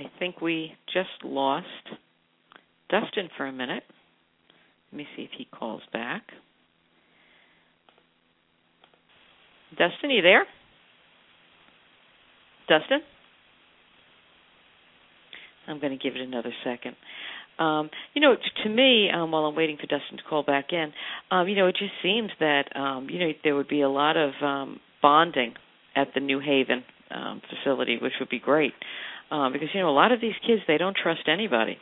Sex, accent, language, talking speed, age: female, American, English, 160 wpm, 50-69